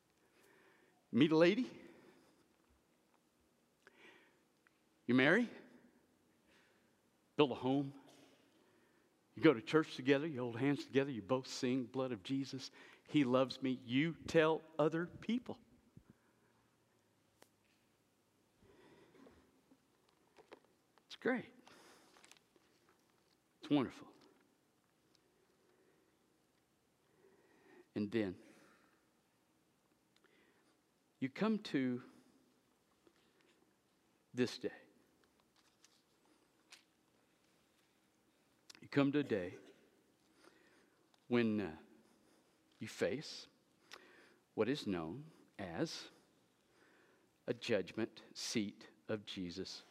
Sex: male